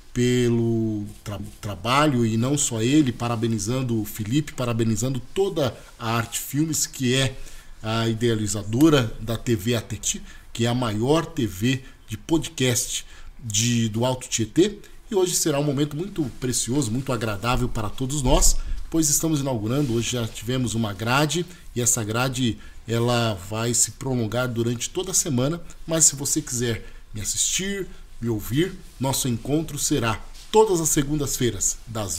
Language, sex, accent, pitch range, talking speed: Portuguese, male, Brazilian, 115-155 Hz, 145 wpm